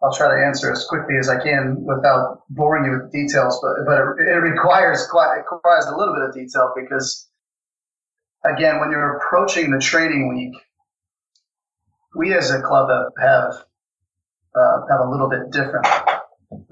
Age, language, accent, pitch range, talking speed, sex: 30-49, English, American, 125-145 Hz, 170 wpm, male